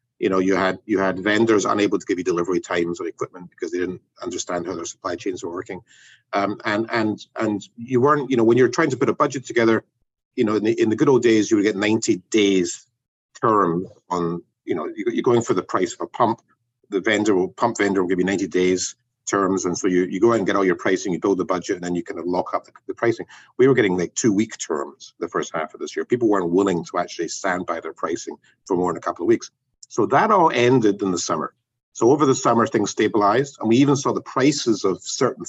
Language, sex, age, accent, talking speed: English, male, 50-69, British, 255 wpm